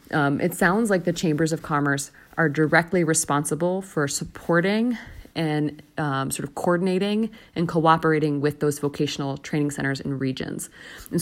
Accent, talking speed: American, 150 wpm